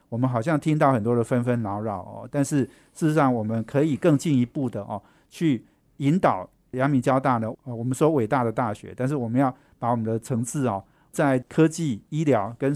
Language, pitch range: Chinese, 115-145 Hz